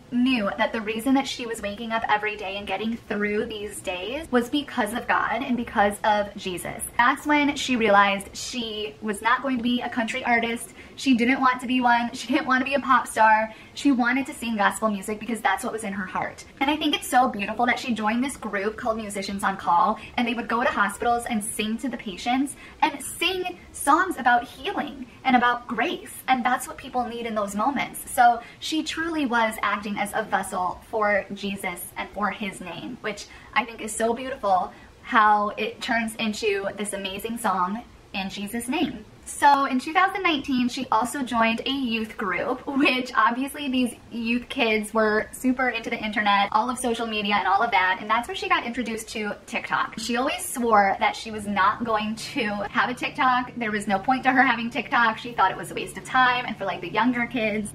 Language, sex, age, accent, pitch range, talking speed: English, female, 10-29, American, 210-255 Hz, 215 wpm